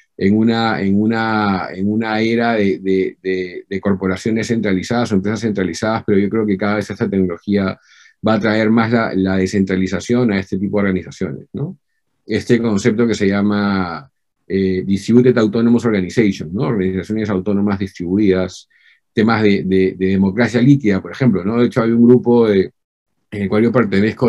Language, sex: Spanish, male